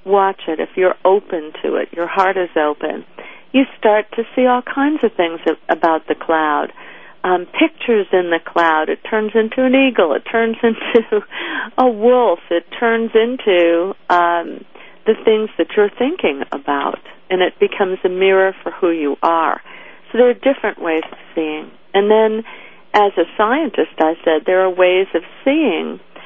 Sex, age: female, 50-69